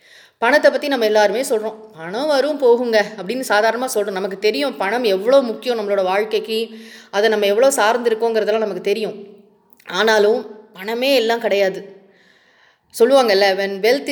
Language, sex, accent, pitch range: English, female, Indian, 205-275 Hz